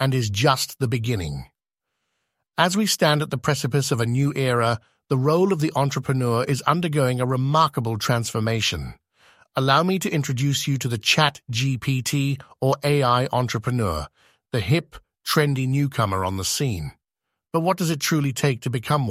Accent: British